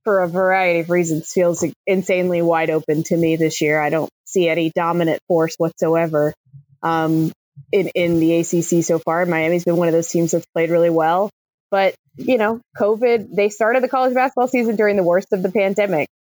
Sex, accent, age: female, American, 20-39